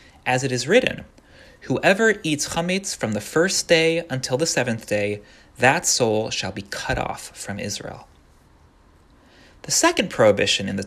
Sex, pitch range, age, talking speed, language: male, 110-160 Hz, 30-49, 155 wpm, English